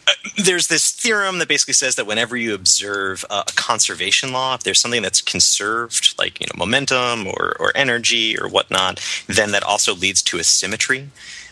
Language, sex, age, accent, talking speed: English, male, 30-49, American, 190 wpm